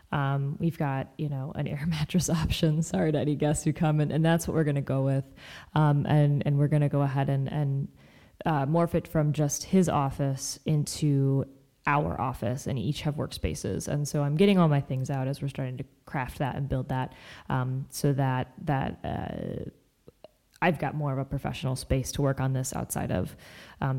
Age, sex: 20-39, female